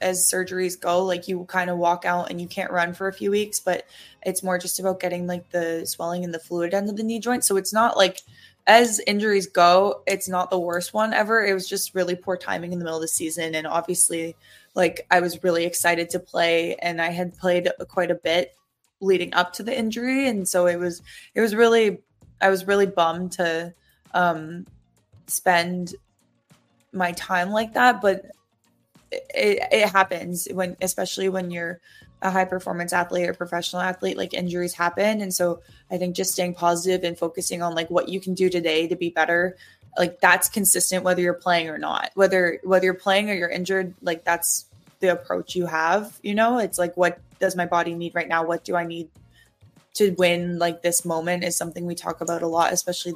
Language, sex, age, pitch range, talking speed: English, female, 20-39, 170-190 Hz, 210 wpm